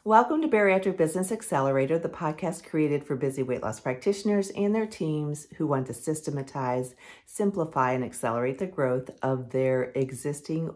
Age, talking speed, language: 50-69, 155 wpm, English